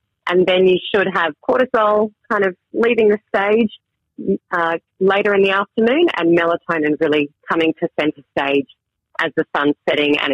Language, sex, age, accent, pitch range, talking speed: English, female, 30-49, Australian, 155-195 Hz, 165 wpm